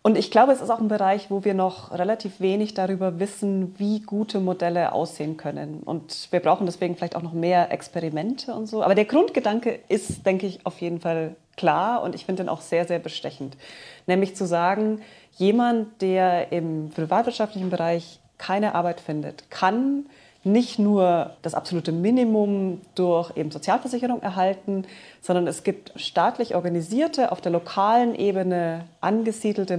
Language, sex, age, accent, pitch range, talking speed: German, female, 30-49, German, 175-210 Hz, 160 wpm